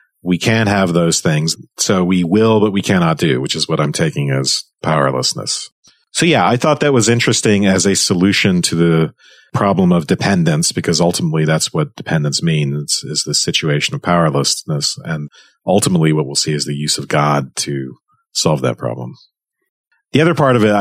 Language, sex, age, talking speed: English, male, 40-59, 185 wpm